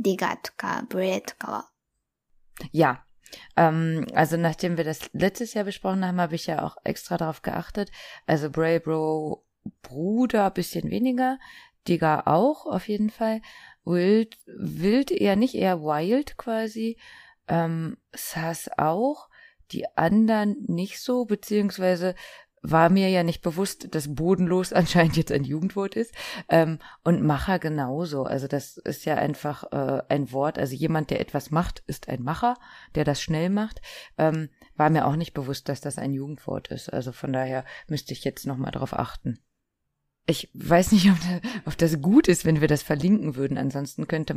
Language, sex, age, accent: Japanese, female, 20-39, German